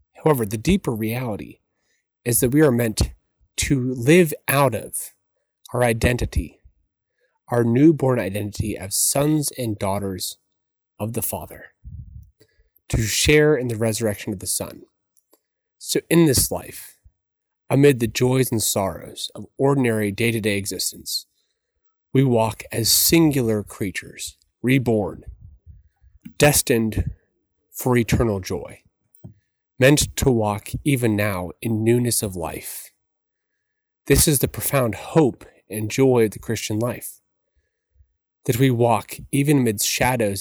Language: English